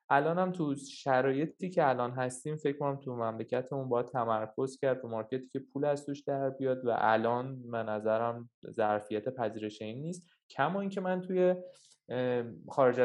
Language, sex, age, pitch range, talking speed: Persian, male, 20-39, 115-150 Hz, 155 wpm